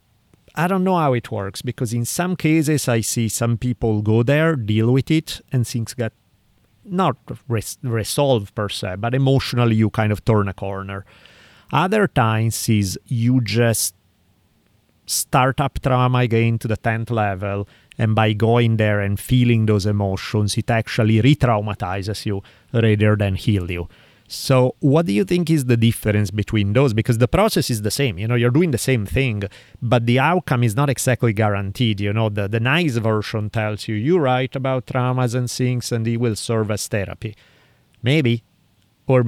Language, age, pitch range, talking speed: English, 30-49, 105-130 Hz, 175 wpm